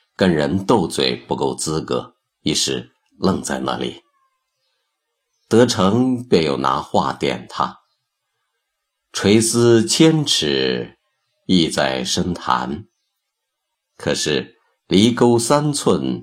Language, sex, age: Chinese, male, 50-69